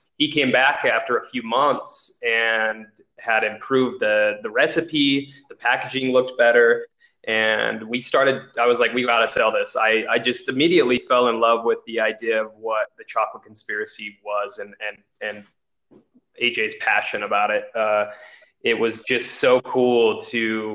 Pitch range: 110-135 Hz